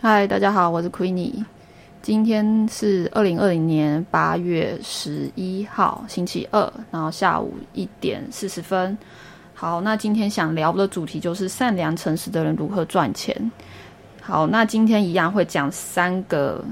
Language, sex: Chinese, female